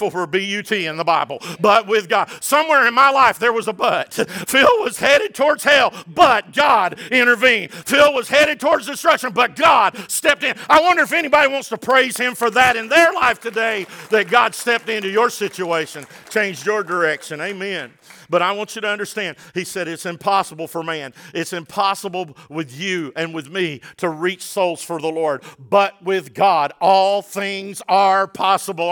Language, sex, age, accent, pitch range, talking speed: English, male, 50-69, American, 185-245 Hz, 185 wpm